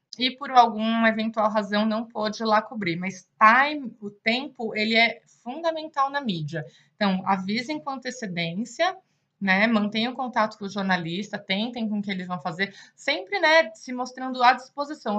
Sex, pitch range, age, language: female, 195-245 Hz, 20-39, Portuguese